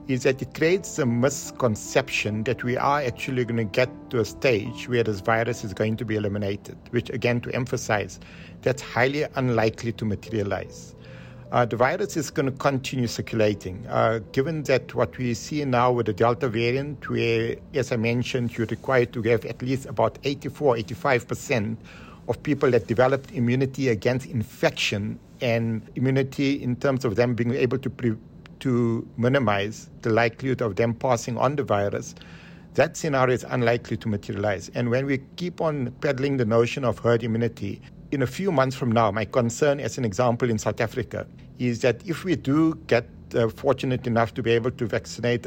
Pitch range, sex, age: 115-130 Hz, male, 60-79